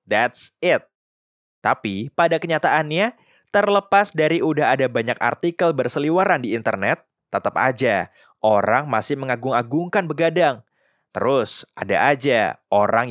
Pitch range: 115-175 Hz